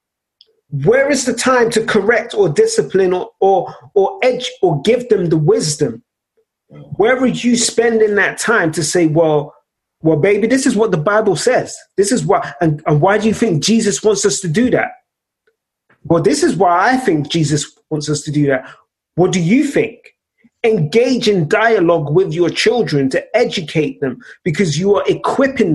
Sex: male